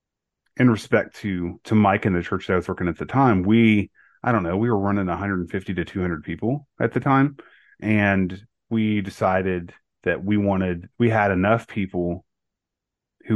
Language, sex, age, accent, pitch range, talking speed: English, male, 30-49, American, 90-100 Hz, 180 wpm